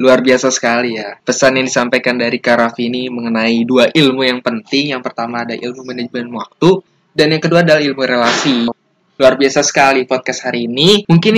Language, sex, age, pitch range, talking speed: Indonesian, male, 20-39, 125-160 Hz, 185 wpm